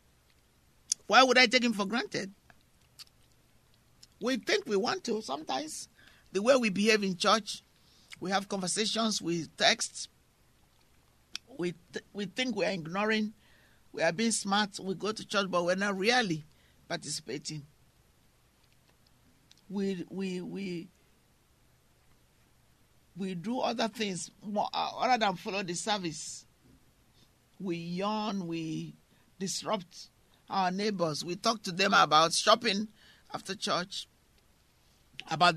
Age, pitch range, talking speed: 50-69, 160-215 Hz, 120 wpm